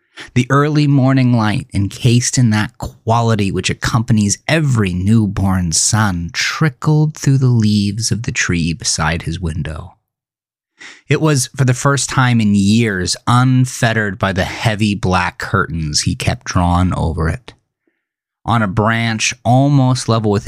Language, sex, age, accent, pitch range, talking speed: English, male, 30-49, American, 95-125 Hz, 140 wpm